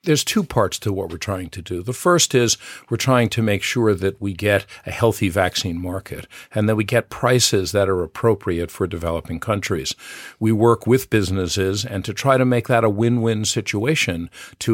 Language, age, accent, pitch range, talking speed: Dutch, 50-69, American, 95-115 Hz, 200 wpm